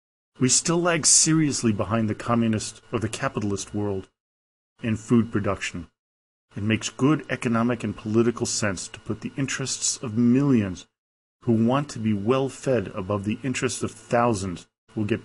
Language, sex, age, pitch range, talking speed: English, male, 40-59, 100-125 Hz, 155 wpm